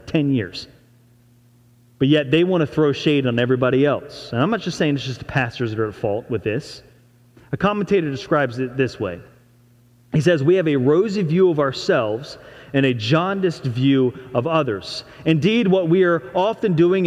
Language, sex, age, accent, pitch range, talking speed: English, male, 30-49, American, 120-170 Hz, 190 wpm